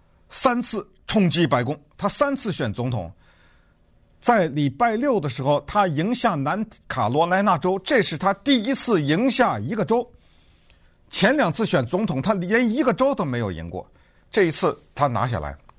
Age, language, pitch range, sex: 50-69, Chinese, 115-185 Hz, male